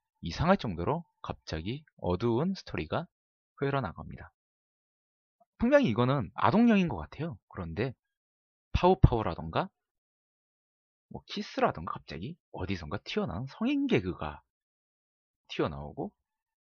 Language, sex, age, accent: Korean, male, 30-49, native